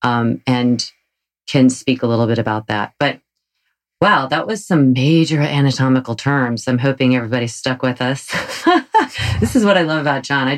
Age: 30-49